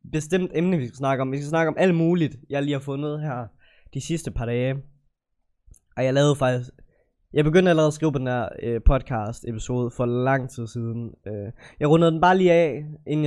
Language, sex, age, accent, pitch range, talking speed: Danish, male, 20-39, native, 120-155 Hz, 215 wpm